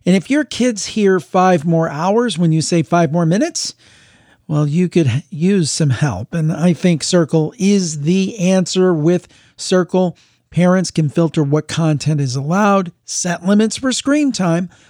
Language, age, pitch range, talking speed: English, 50-69, 150-185 Hz, 165 wpm